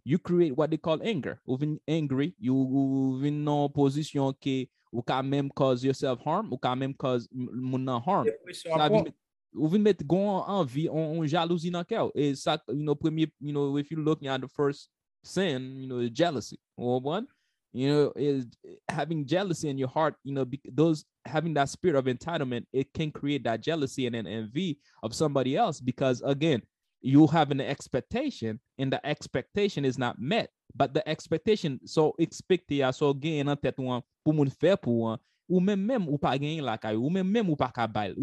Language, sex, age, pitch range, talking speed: English, male, 20-39, 130-160 Hz, 150 wpm